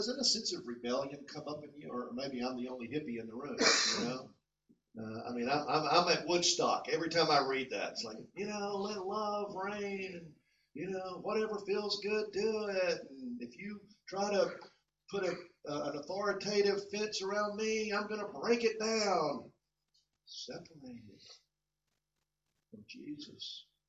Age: 50-69